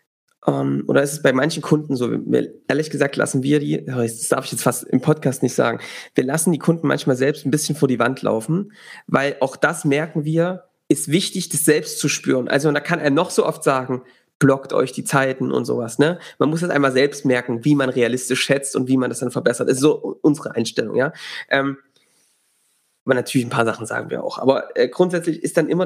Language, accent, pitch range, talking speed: German, German, 135-170 Hz, 225 wpm